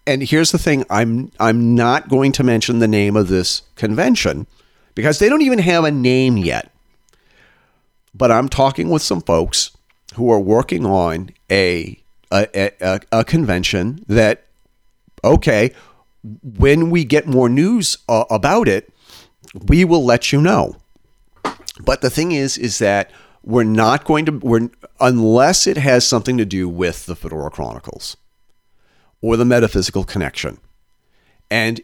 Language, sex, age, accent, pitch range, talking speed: English, male, 40-59, American, 105-135 Hz, 150 wpm